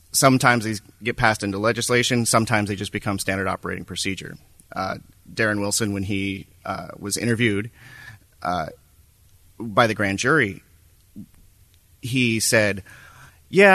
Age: 30-49